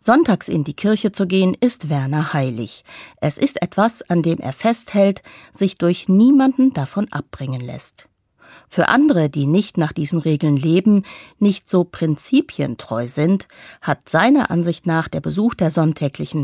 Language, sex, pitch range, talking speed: English, female, 150-205 Hz, 155 wpm